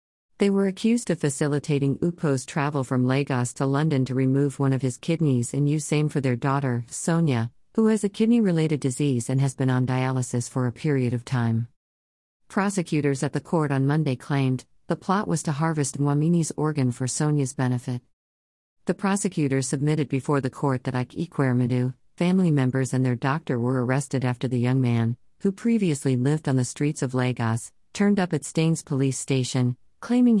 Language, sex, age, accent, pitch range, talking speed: English, female, 50-69, American, 125-155 Hz, 180 wpm